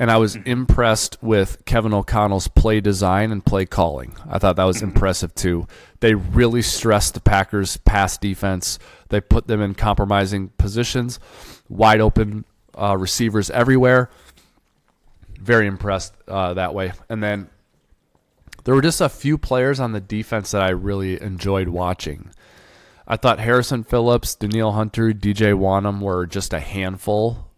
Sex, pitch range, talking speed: male, 95-115 Hz, 150 wpm